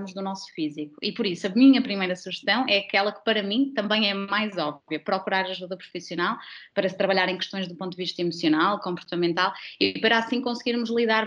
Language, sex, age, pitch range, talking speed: Portuguese, female, 20-39, 185-220 Hz, 200 wpm